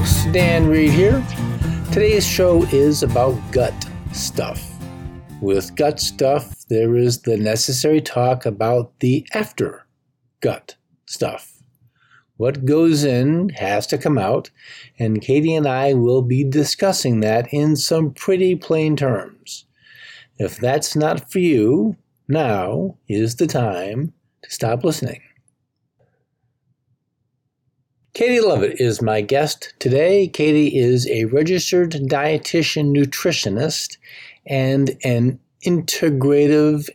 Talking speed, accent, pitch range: 110 wpm, American, 125-150 Hz